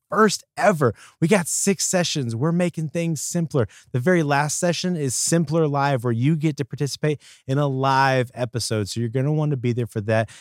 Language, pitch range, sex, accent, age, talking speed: English, 115-150 Hz, male, American, 30-49, 210 wpm